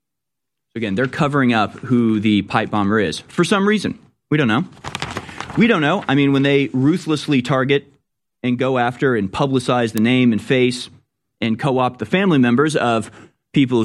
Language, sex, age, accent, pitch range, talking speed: English, male, 30-49, American, 105-130 Hz, 175 wpm